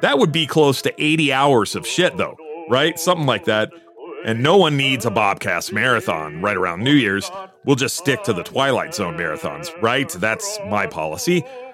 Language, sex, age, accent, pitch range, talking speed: English, male, 30-49, American, 115-170 Hz, 190 wpm